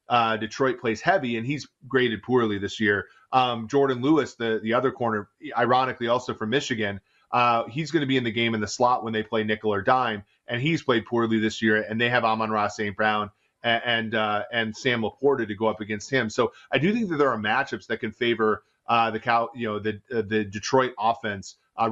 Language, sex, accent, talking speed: English, male, American, 225 wpm